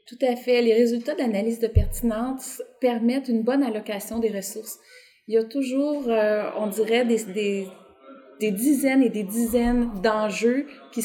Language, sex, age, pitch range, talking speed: English, female, 30-49, 210-250 Hz, 165 wpm